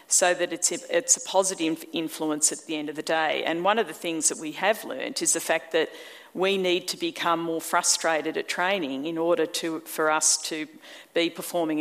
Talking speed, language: 205 wpm, English